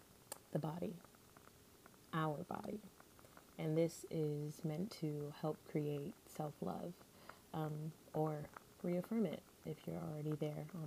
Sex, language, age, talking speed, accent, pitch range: female, English, 20-39, 115 wpm, American, 155-175 Hz